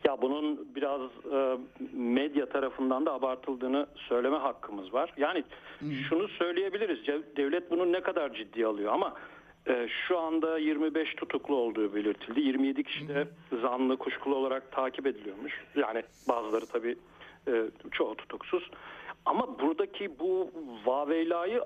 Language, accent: Turkish, native